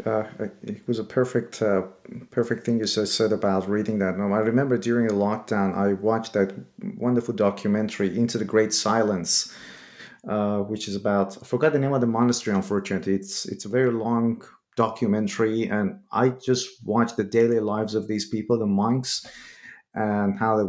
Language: English